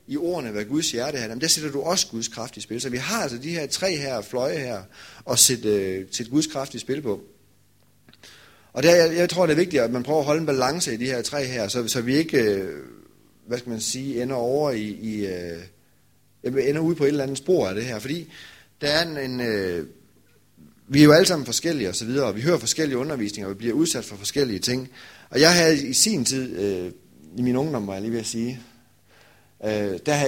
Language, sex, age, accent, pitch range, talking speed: Danish, male, 30-49, native, 105-145 Hz, 235 wpm